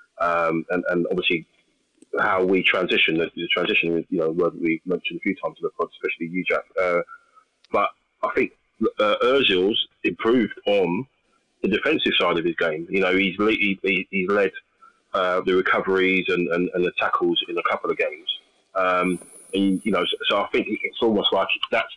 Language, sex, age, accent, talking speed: English, male, 20-39, British, 185 wpm